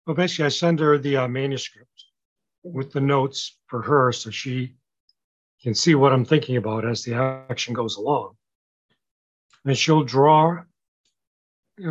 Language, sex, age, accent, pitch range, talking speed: English, male, 50-69, American, 120-150 Hz, 150 wpm